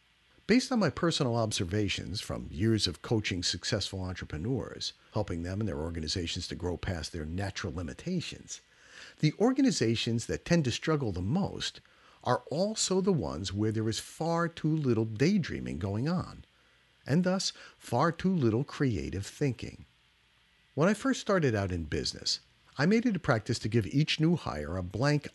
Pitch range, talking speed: 100-165 Hz, 165 wpm